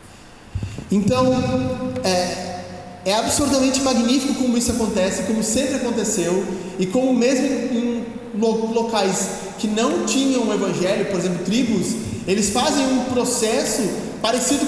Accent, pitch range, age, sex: Brazilian, 200-240 Hz, 20-39, male